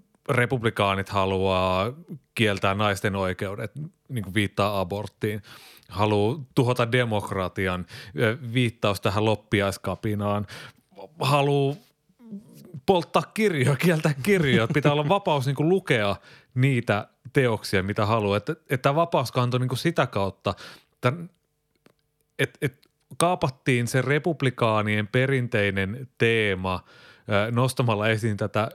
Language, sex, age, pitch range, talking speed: Finnish, male, 30-49, 100-145 Hz, 90 wpm